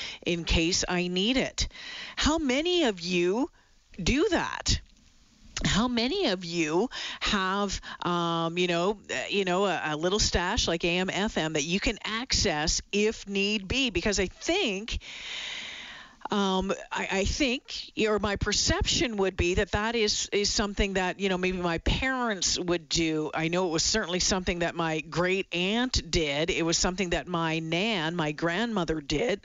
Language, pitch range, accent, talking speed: English, 175-235 Hz, American, 160 wpm